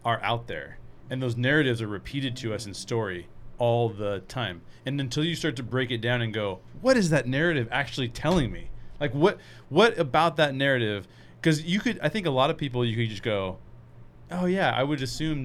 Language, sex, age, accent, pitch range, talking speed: English, male, 30-49, American, 100-125 Hz, 220 wpm